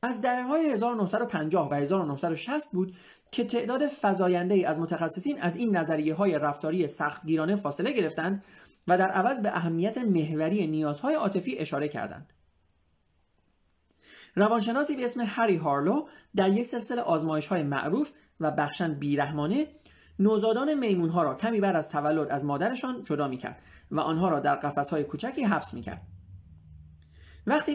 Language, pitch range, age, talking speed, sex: Persian, 150-225 Hz, 30-49, 140 wpm, male